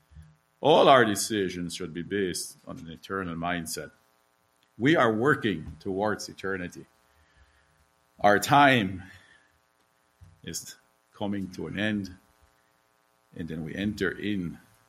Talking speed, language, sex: 110 wpm, English, male